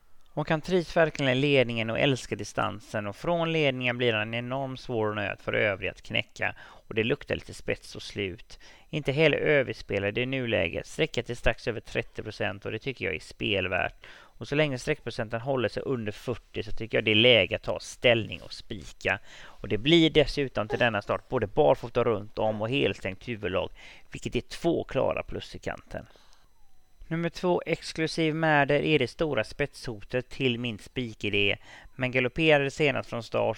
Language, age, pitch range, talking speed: English, 30-49, 110-135 Hz, 180 wpm